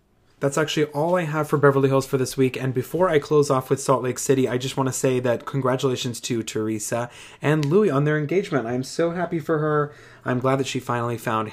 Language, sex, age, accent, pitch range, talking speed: English, male, 20-39, American, 120-145 Hz, 235 wpm